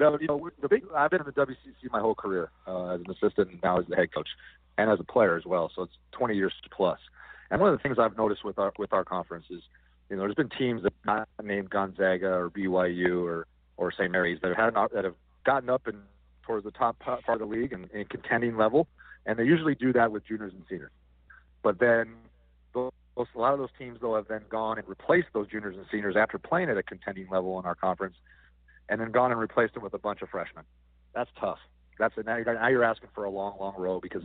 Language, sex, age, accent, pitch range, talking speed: English, male, 40-59, American, 90-115 Hz, 245 wpm